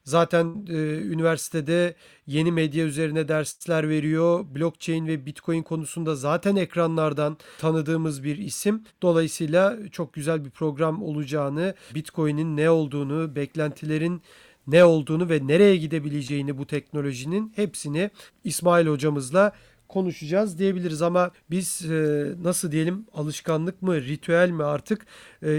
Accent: native